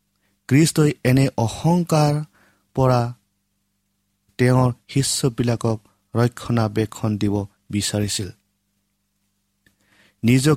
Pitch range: 100-125 Hz